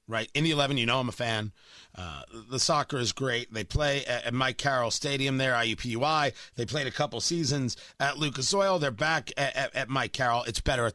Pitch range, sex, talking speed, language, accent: 130-185 Hz, male, 225 wpm, English, American